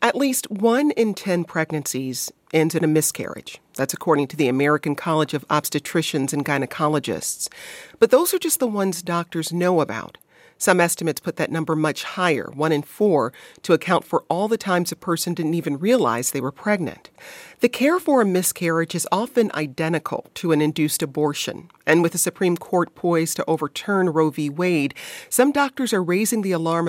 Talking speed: 185 wpm